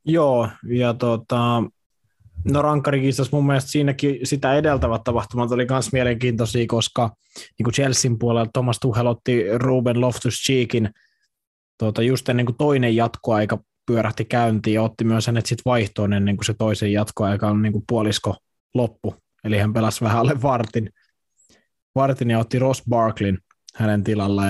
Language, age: Finnish, 20-39